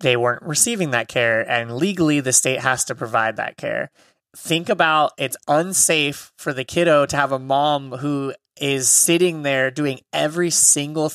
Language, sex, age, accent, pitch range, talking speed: English, male, 20-39, American, 135-165 Hz, 170 wpm